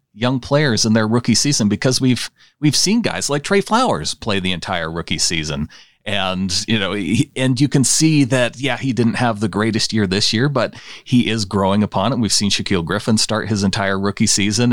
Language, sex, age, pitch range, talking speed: English, male, 30-49, 100-125 Hz, 210 wpm